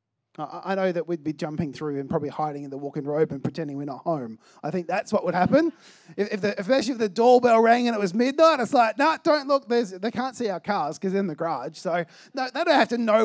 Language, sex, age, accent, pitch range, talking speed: English, male, 20-39, Australian, 150-235 Hz, 275 wpm